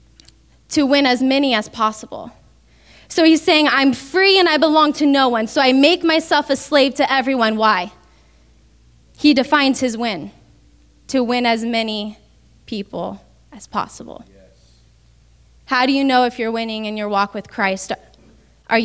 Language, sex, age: English, female, 10-29